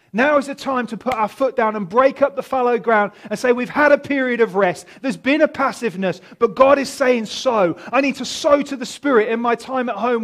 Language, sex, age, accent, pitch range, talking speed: English, male, 30-49, British, 195-265 Hz, 260 wpm